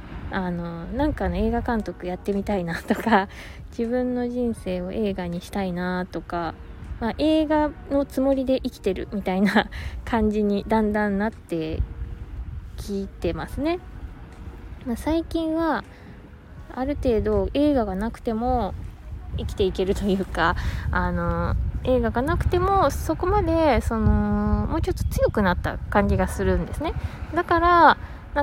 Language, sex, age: Japanese, female, 20-39